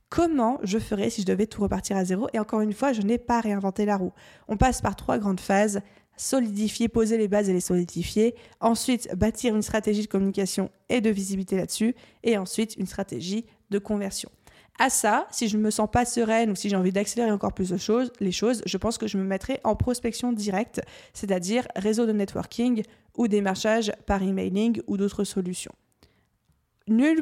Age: 20-39